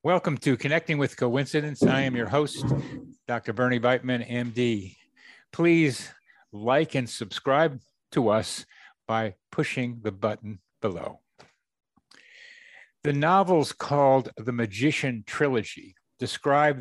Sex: male